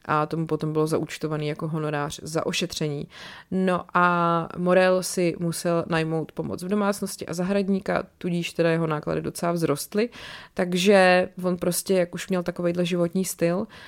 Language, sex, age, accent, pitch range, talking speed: Czech, female, 30-49, native, 165-185 Hz, 150 wpm